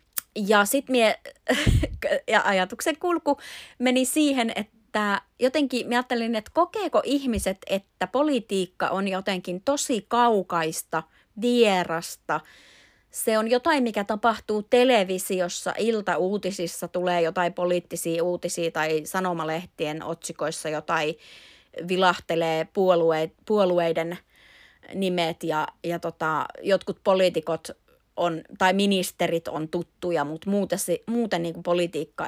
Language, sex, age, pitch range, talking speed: Finnish, female, 30-49, 170-235 Hz, 100 wpm